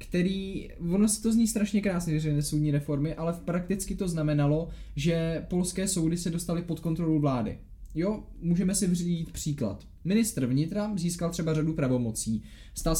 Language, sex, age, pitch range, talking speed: Czech, male, 20-39, 150-175 Hz, 155 wpm